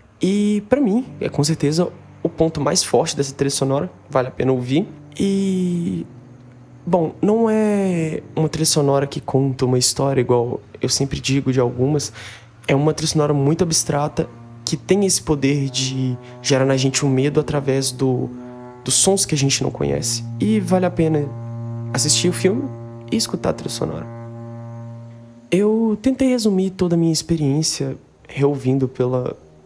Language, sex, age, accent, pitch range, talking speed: Portuguese, male, 20-39, Brazilian, 125-160 Hz, 160 wpm